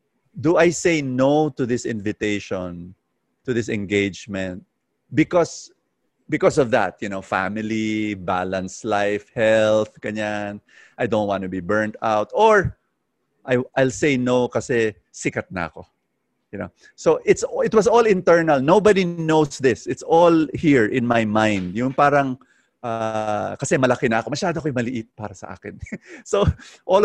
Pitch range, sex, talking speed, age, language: 105-150 Hz, male, 150 wpm, 30-49, English